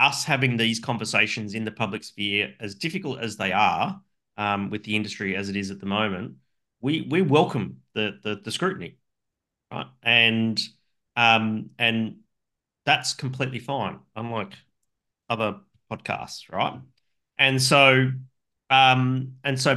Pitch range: 105-125 Hz